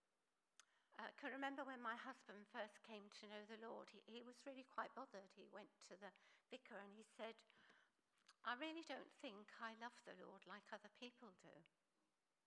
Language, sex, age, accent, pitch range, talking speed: English, female, 60-79, British, 195-250 Hz, 185 wpm